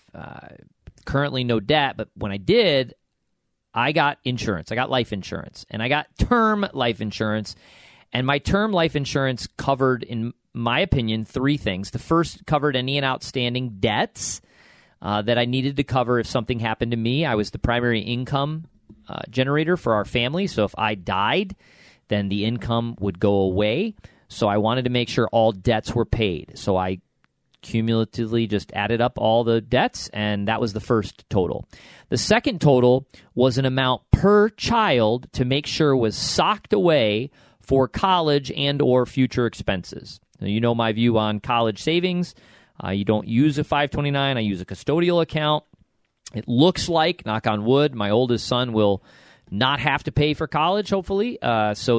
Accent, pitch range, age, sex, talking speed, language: American, 110-140 Hz, 40-59, male, 175 wpm, English